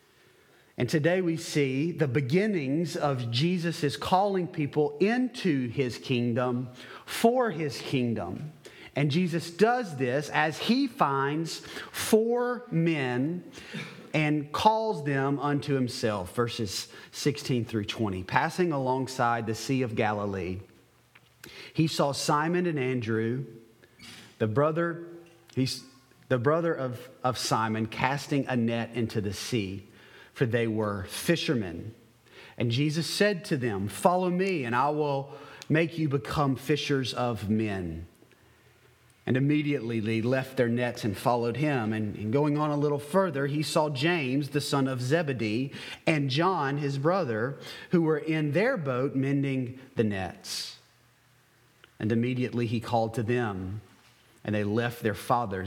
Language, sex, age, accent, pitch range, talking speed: English, male, 30-49, American, 115-155 Hz, 135 wpm